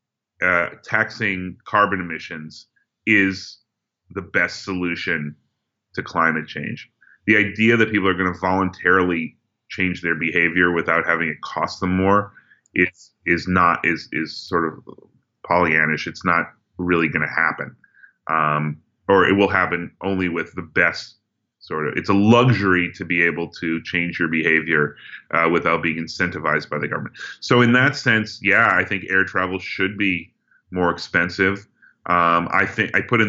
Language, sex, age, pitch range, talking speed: English, male, 30-49, 85-100 Hz, 160 wpm